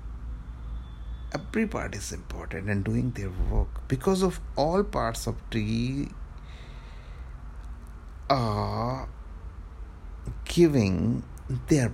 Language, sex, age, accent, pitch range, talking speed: English, male, 60-79, Indian, 65-100 Hz, 85 wpm